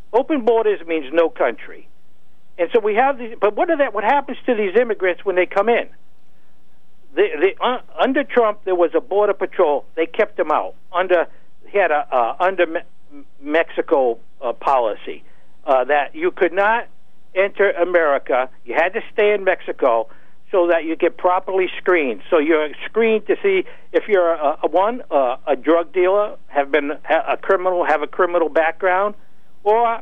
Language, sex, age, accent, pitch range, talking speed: English, male, 60-79, American, 170-240 Hz, 175 wpm